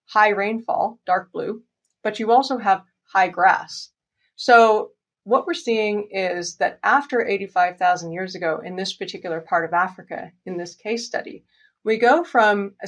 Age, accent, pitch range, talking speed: 30-49, American, 175-225 Hz, 160 wpm